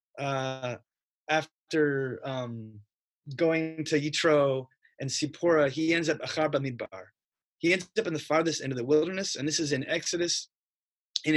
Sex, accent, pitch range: male, American, 130-165 Hz